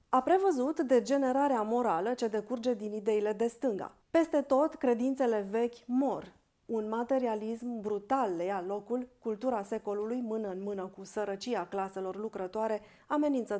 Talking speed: 135 wpm